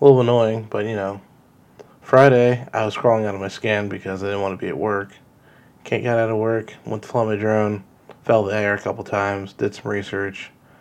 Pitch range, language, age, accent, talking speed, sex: 100-120 Hz, English, 20-39, American, 235 wpm, male